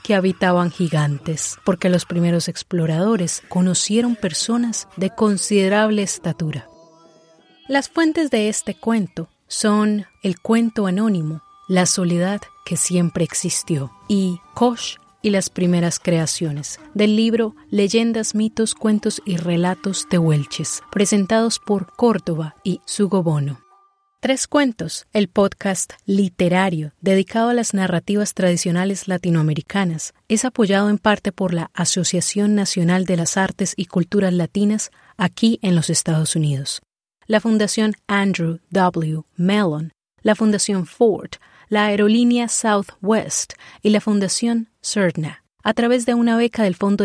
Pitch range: 175-215 Hz